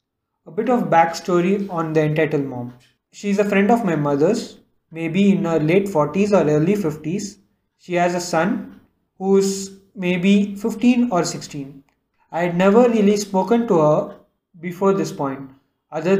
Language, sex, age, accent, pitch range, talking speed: English, male, 20-39, Indian, 155-195 Hz, 165 wpm